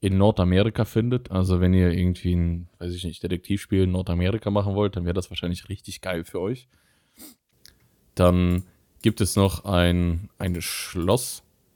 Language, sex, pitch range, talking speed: German, male, 90-110 Hz, 160 wpm